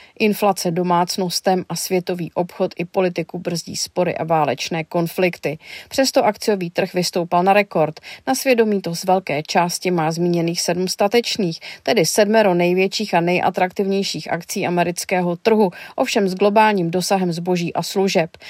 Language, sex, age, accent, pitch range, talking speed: Czech, female, 30-49, native, 175-205 Hz, 140 wpm